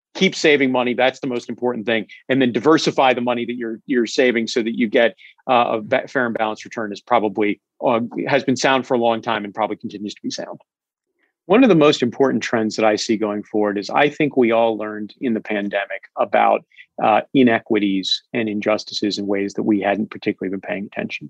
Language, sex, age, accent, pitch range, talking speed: English, male, 40-59, American, 105-125 Hz, 215 wpm